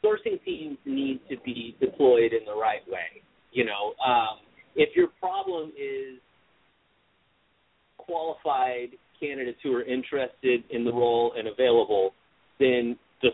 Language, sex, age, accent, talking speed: English, male, 30-49, American, 130 wpm